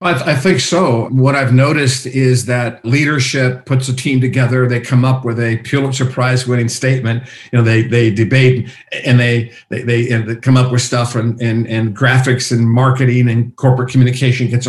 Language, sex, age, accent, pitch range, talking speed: English, male, 50-69, American, 120-135 Hz, 180 wpm